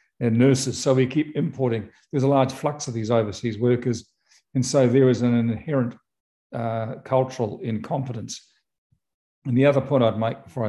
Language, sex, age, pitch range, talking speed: English, male, 50-69, 110-130 Hz, 170 wpm